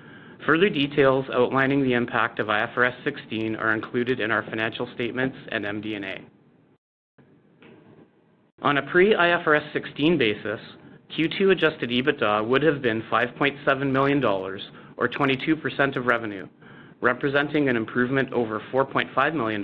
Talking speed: 125 wpm